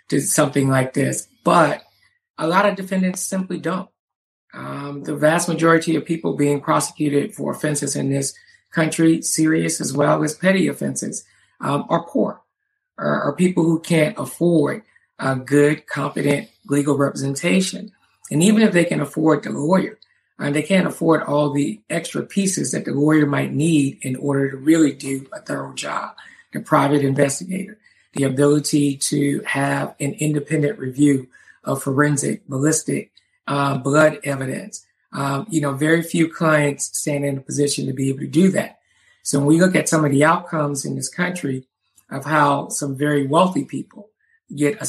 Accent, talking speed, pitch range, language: American, 165 wpm, 140-165 Hz, English